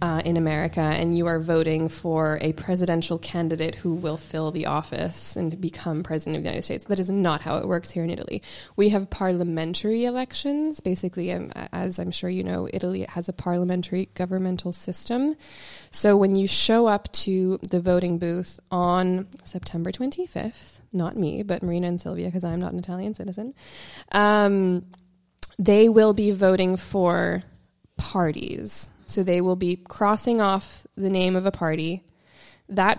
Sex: female